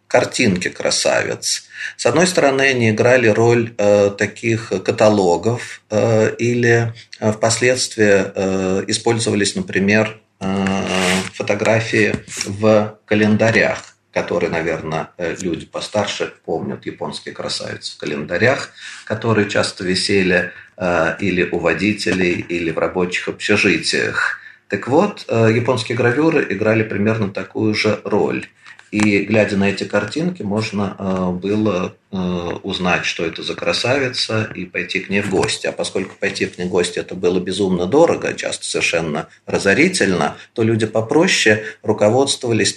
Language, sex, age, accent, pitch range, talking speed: Russian, male, 40-59, native, 95-115 Hz, 120 wpm